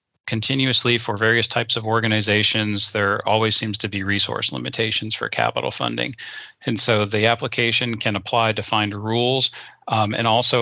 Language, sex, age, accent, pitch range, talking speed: English, male, 40-59, American, 100-115 Hz, 155 wpm